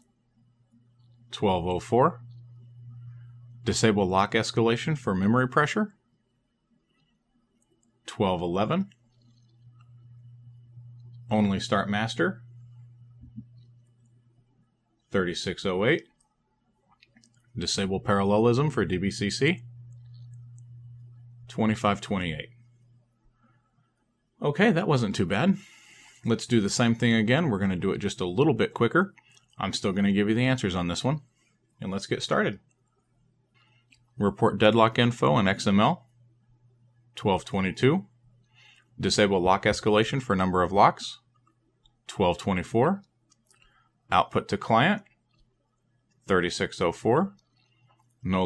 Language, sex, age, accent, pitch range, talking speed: English, male, 40-59, American, 110-120 Hz, 85 wpm